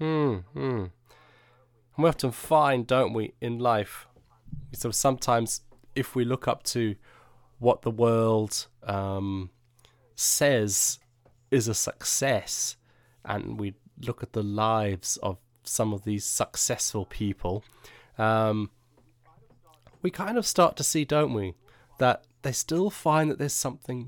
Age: 20-39